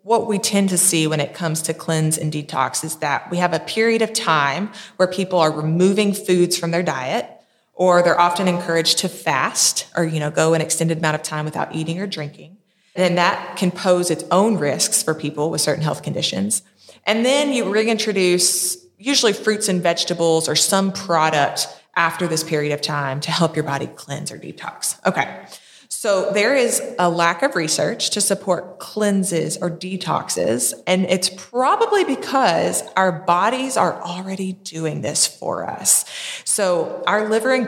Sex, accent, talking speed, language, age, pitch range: female, American, 180 wpm, English, 20-39, 165-205 Hz